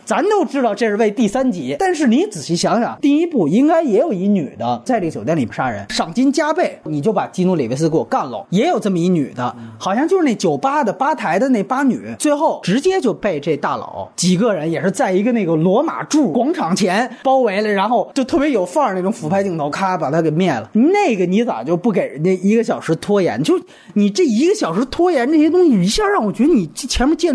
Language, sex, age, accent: Chinese, male, 30-49, native